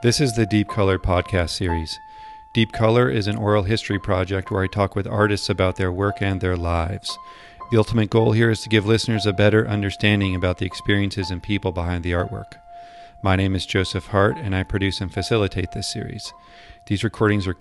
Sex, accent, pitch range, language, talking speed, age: male, American, 95-115 Hz, English, 200 wpm, 40-59